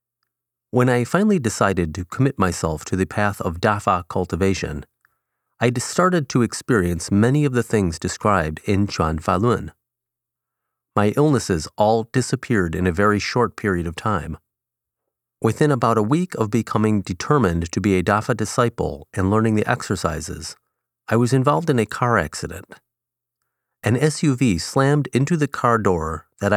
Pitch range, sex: 95-125 Hz, male